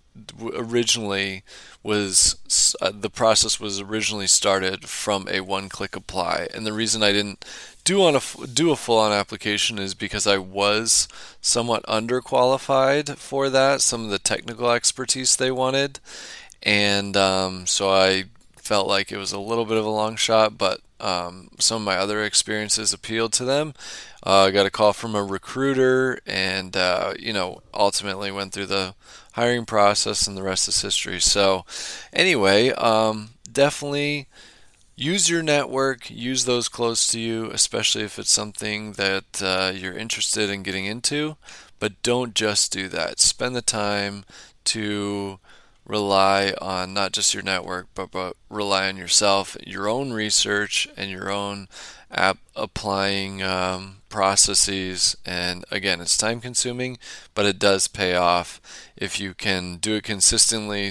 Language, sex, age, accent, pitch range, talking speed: English, male, 20-39, American, 95-115 Hz, 155 wpm